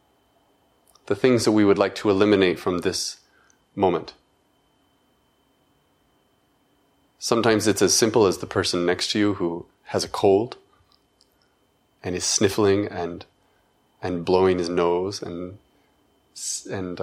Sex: male